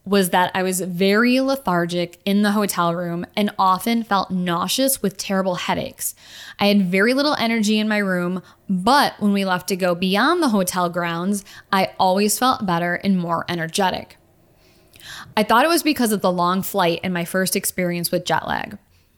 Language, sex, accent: English, female, American